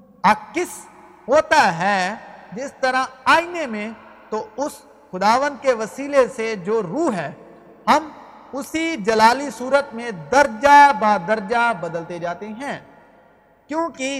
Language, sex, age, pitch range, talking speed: Urdu, male, 50-69, 220-285 Hz, 120 wpm